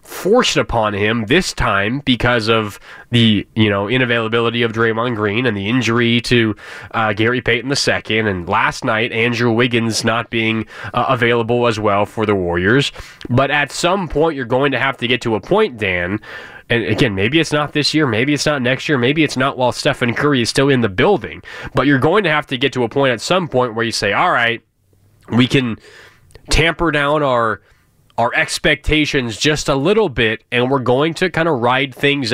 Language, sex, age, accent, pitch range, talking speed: English, male, 20-39, American, 115-155 Hz, 200 wpm